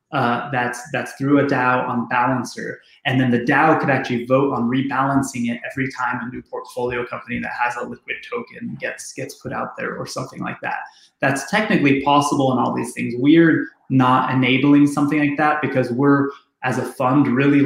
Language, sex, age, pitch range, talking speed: English, male, 20-39, 125-145 Hz, 195 wpm